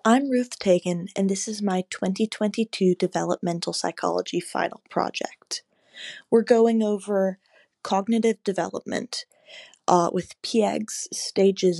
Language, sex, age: English, female, 20-39